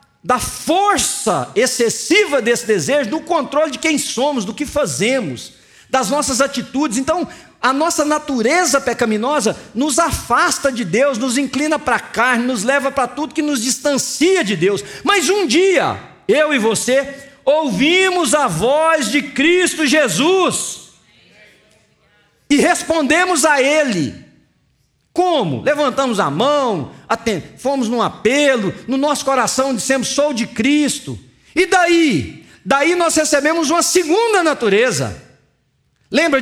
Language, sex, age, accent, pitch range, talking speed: English, male, 50-69, Brazilian, 225-300 Hz, 130 wpm